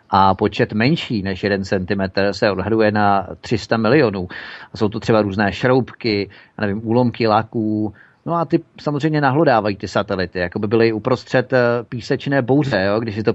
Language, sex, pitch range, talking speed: Czech, male, 105-120 Hz, 160 wpm